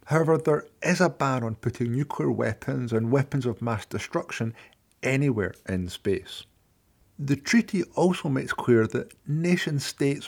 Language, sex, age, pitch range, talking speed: English, male, 50-69, 110-140 Hz, 145 wpm